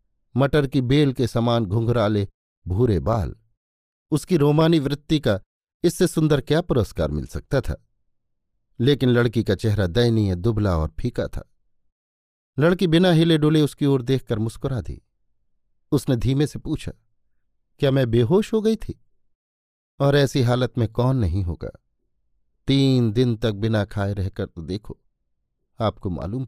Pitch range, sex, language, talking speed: 105-145 Hz, male, Hindi, 145 wpm